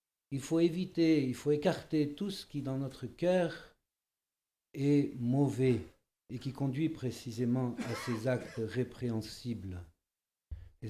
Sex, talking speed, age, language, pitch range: male, 125 wpm, 60-79, French, 110-145 Hz